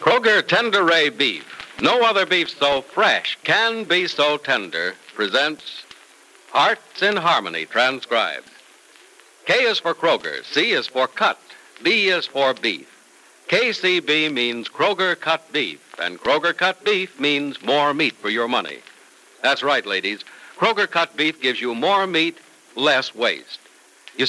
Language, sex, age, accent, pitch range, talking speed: English, male, 60-79, American, 140-200 Hz, 145 wpm